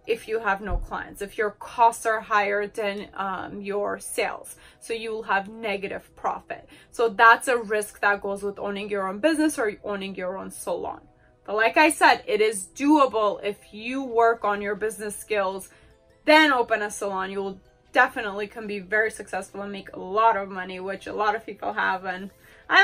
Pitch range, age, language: 210-275 Hz, 20-39, English